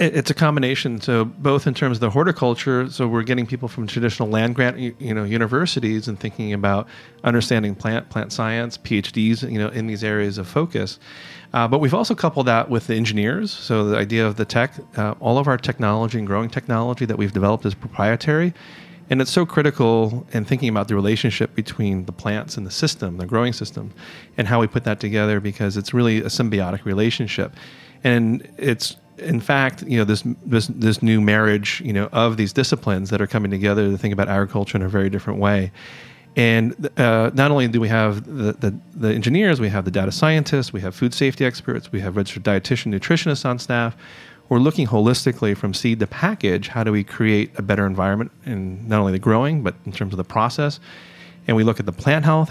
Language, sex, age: English, male, 30-49